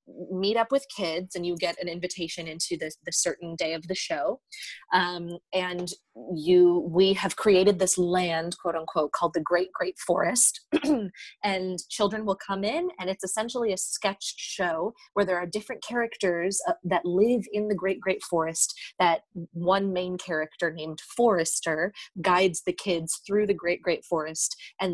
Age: 30-49